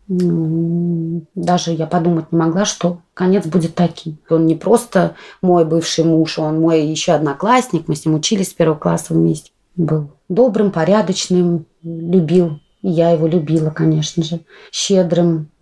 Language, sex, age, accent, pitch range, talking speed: Russian, female, 20-39, native, 160-185 Hz, 150 wpm